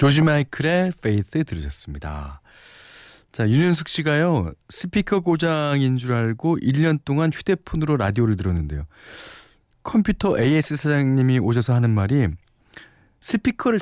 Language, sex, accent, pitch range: Korean, male, native, 100-155 Hz